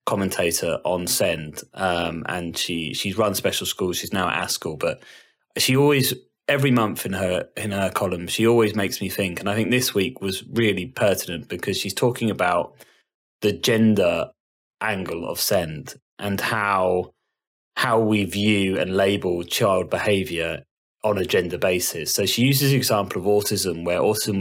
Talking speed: 165 wpm